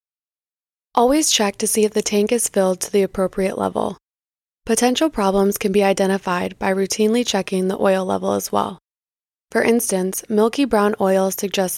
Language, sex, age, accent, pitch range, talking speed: English, female, 20-39, American, 190-225 Hz, 165 wpm